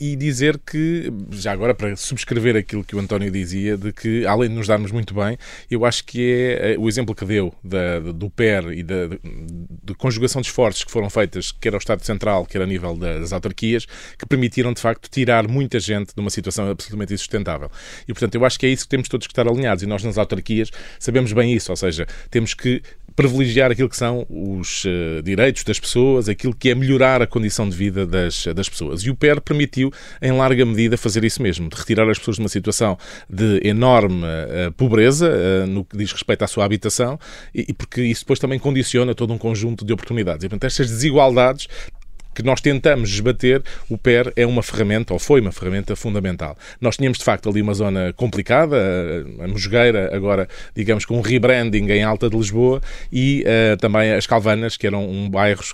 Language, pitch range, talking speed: English, 100-125 Hz, 200 wpm